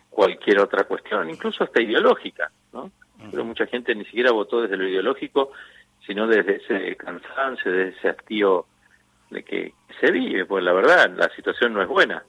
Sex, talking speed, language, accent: male, 170 wpm, Spanish, Argentinian